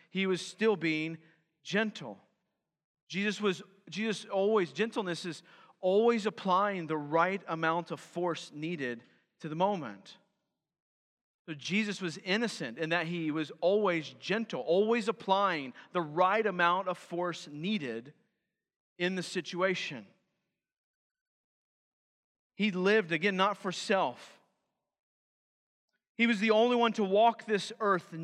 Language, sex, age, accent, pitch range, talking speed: English, male, 40-59, American, 175-225 Hz, 125 wpm